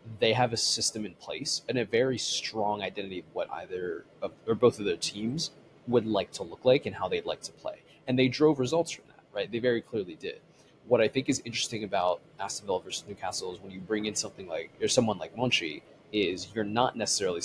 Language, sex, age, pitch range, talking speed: English, male, 20-39, 105-140 Hz, 225 wpm